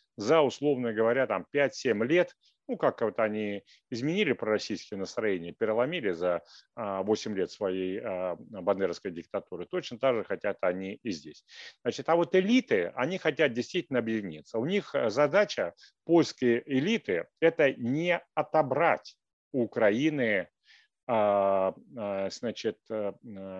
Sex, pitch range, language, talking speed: male, 110-155 Hz, Russian, 115 wpm